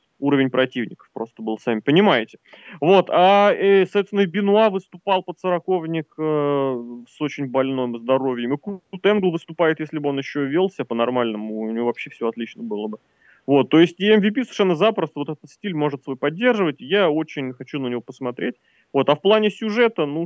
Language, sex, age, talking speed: Russian, male, 20-39, 180 wpm